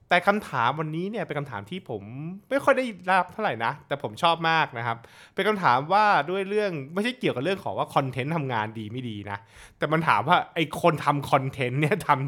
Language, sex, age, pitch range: Thai, male, 20-39, 130-180 Hz